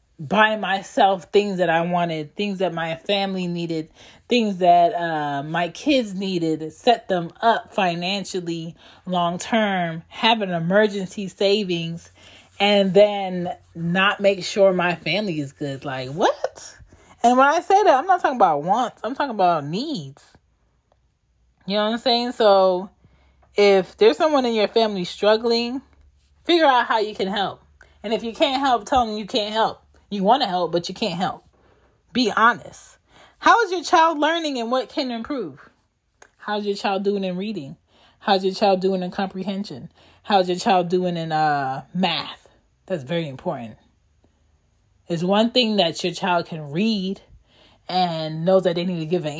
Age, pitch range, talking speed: 20-39, 170-220 Hz, 170 wpm